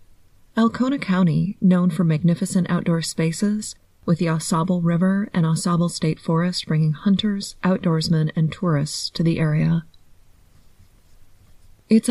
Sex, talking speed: female, 120 wpm